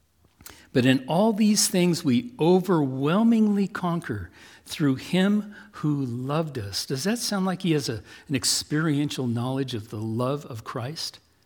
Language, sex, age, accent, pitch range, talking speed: English, male, 60-79, American, 100-155 Hz, 140 wpm